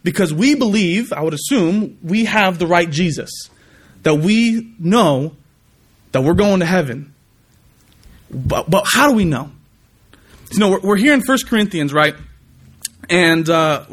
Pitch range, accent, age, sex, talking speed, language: 170-220 Hz, American, 30-49, male, 150 wpm, English